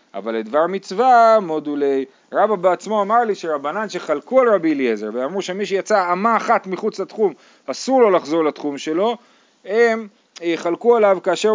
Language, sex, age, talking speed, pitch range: Hebrew, male, 30-49, 150 wpm, 135-200 Hz